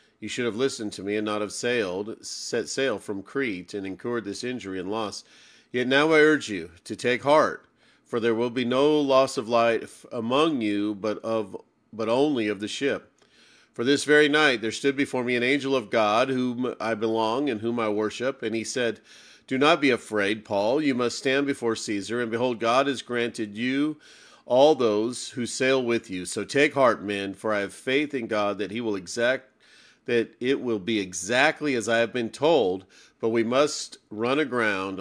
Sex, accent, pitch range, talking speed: male, American, 105-130 Hz, 200 wpm